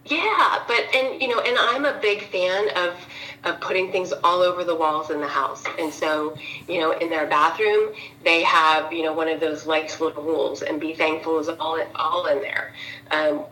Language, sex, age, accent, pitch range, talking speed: English, female, 30-49, American, 160-235 Hz, 210 wpm